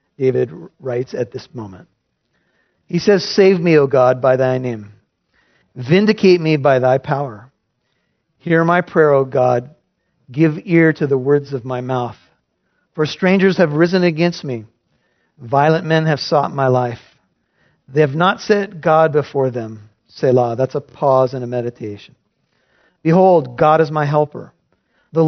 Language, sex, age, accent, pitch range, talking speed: English, male, 50-69, American, 130-175 Hz, 150 wpm